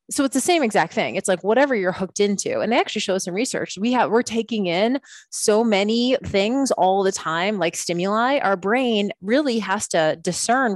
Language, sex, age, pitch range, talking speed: English, female, 20-39, 175-225 Hz, 210 wpm